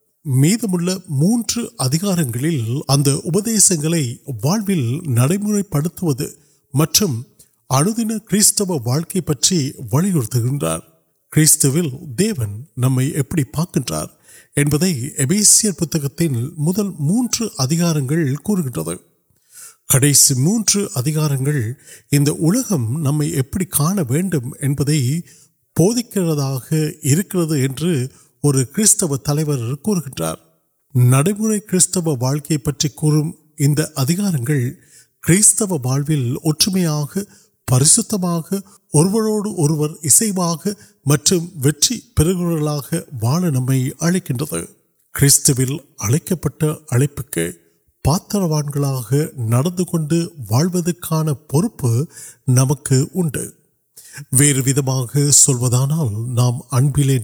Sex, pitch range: male, 135-175 Hz